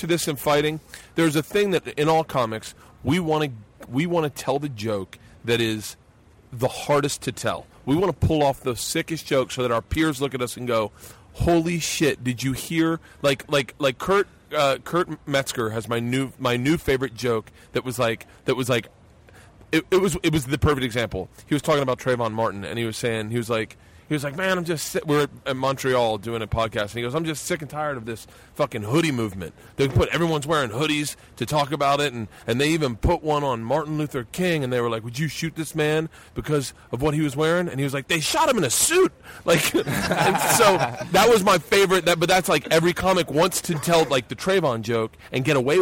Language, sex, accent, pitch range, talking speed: English, male, American, 120-160 Hz, 240 wpm